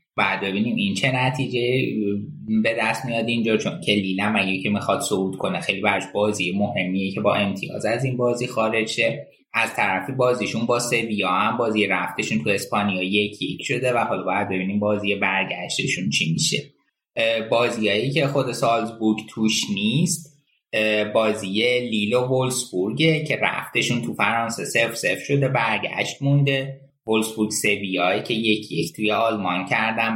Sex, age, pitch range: male, 20-39, 100-125 Hz